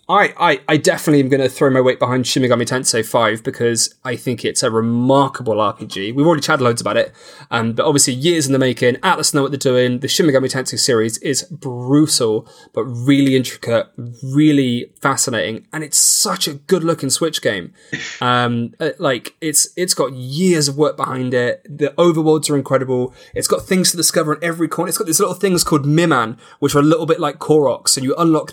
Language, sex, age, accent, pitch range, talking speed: English, male, 20-39, British, 125-160 Hz, 205 wpm